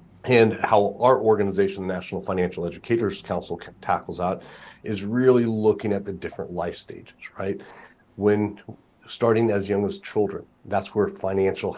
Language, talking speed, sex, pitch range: English, 150 wpm, male, 95-115 Hz